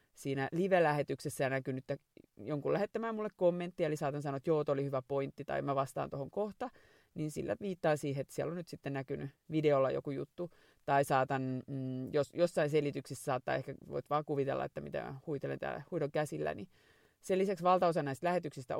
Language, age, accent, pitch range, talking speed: Finnish, 30-49, native, 135-160 Hz, 180 wpm